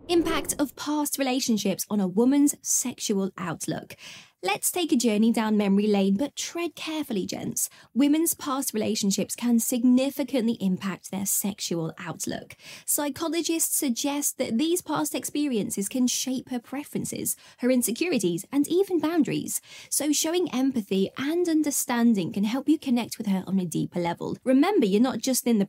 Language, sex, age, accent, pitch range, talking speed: English, female, 10-29, British, 215-290 Hz, 150 wpm